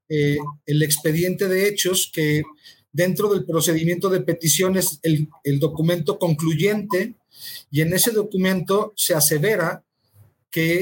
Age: 40-59